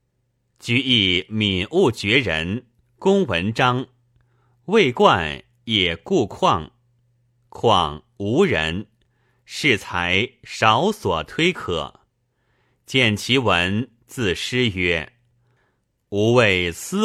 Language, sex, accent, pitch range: Chinese, male, native, 105-125 Hz